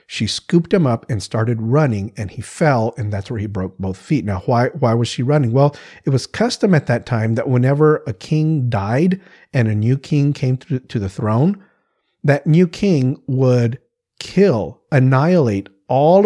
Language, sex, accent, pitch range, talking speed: English, male, American, 110-145 Hz, 185 wpm